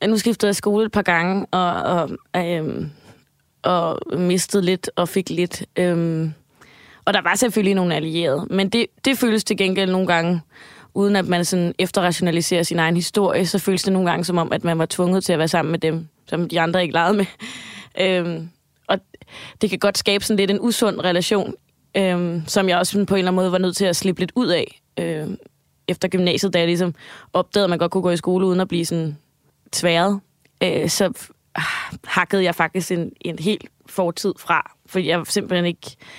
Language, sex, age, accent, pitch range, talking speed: Danish, female, 20-39, native, 170-195 Hz, 200 wpm